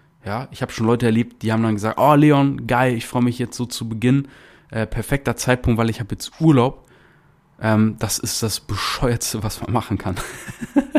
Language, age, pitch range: German, 20-39, 110-140 Hz